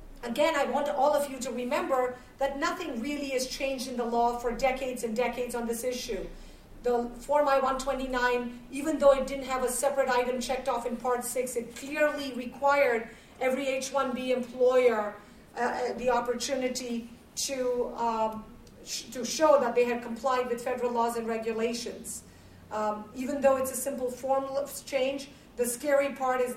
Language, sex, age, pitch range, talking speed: English, female, 40-59, 235-260 Hz, 165 wpm